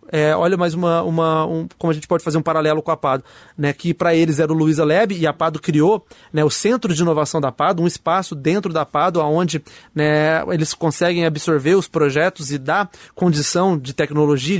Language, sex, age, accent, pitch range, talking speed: Portuguese, male, 20-39, Brazilian, 160-210 Hz, 215 wpm